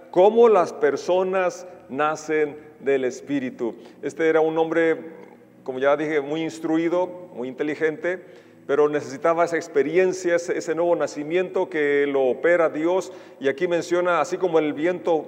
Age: 40-59